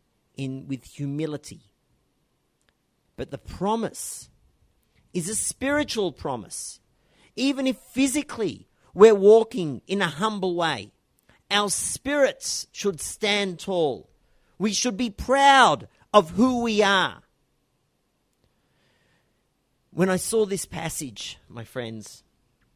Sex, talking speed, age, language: male, 105 wpm, 40-59, English